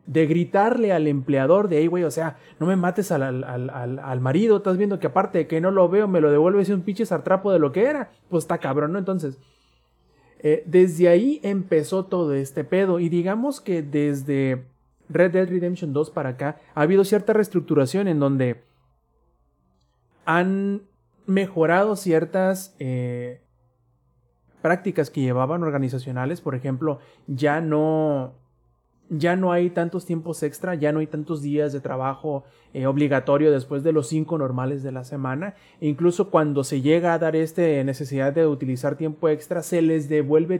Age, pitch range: 30-49, 140-180 Hz